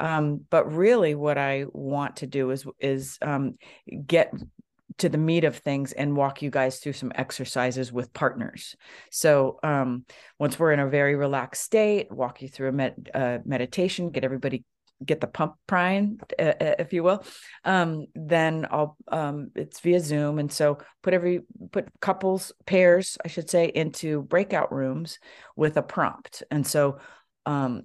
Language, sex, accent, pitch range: English, female, American, 135-165 Hz